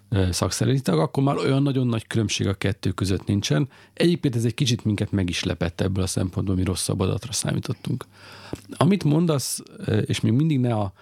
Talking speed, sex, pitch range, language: 175 wpm, male, 100-130 Hz, Hungarian